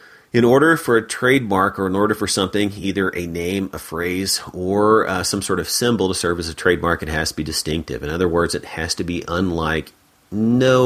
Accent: American